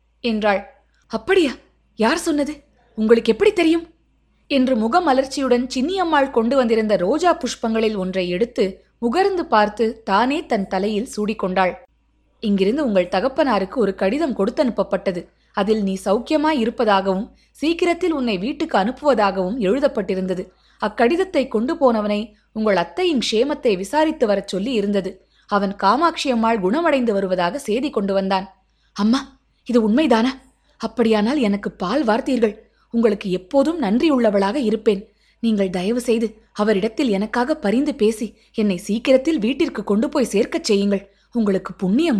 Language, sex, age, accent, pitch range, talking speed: Tamil, female, 20-39, native, 200-270 Hz, 115 wpm